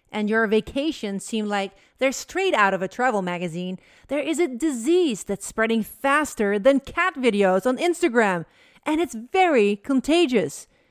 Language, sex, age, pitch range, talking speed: English, female, 40-59, 205-275 Hz, 155 wpm